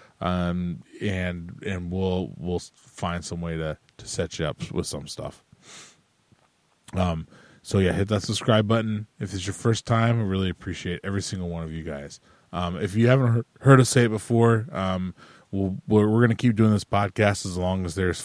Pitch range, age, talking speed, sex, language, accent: 90-110 Hz, 20-39, 195 wpm, male, English, American